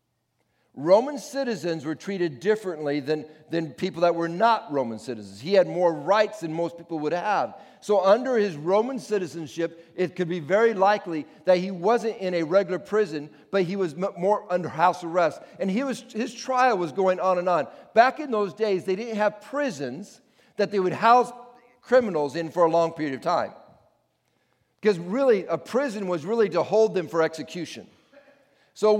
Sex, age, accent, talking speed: male, 50-69, American, 185 wpm